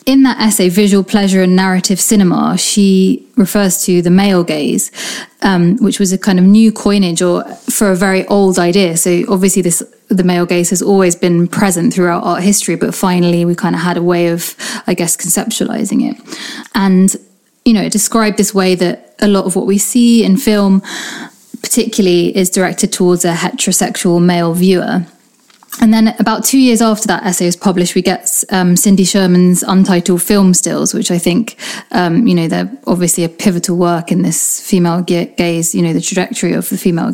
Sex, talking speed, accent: female, 190 wpm, British